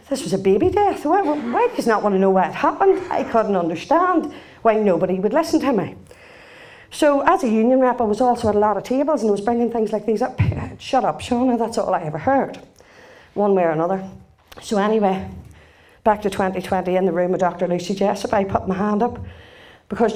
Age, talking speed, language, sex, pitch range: 40-59, 230 wpm, English, female, 190-275 Hz